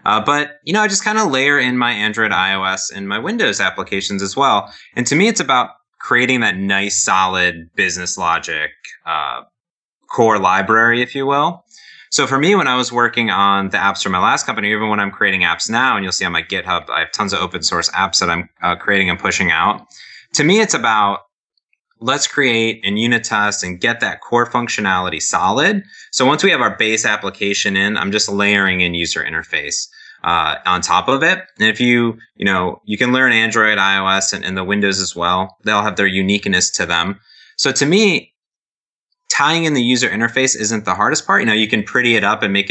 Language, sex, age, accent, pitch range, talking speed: English, male, 20-39, American, 95-125 Hz, 215 wpm